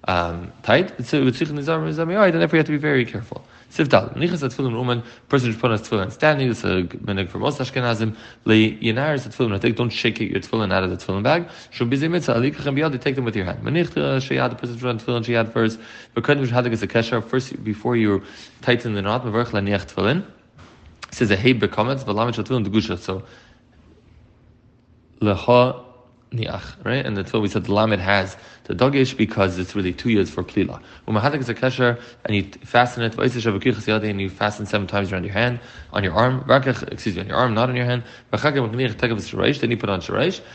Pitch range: 105-130 Hz